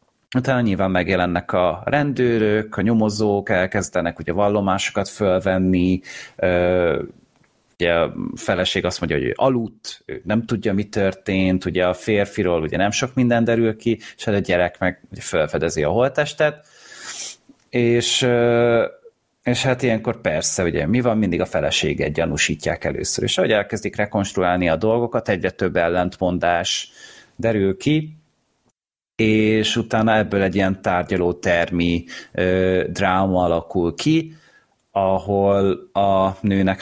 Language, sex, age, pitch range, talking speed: Hungarian, male, 30-49, 95-115 Hz, 130 wpm